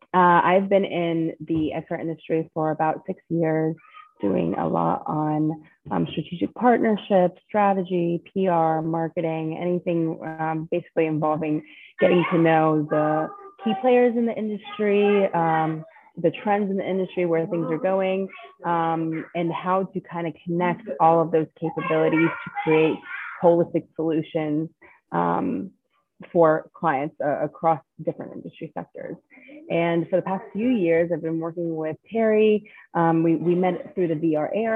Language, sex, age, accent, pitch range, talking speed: English, female, 30-49, American, 160-185 Hz, 145 wpm